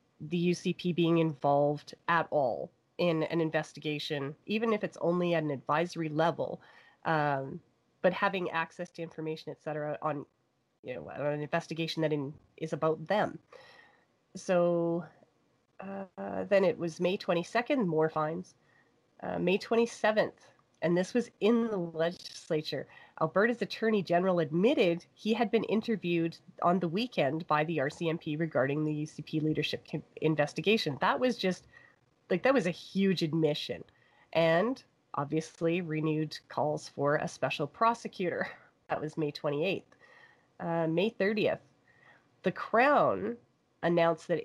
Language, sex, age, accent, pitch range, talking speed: English, female, 30-49, American, 155-190 Hz, 140 wpm